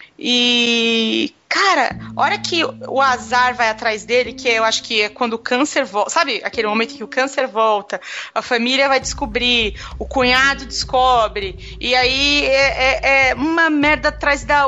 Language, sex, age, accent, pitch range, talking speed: English, female, 30-49, Brazilian, 250-320 Hz, 170 wpm